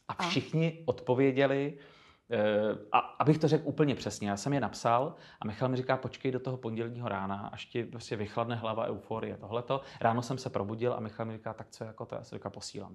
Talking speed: 200 wpm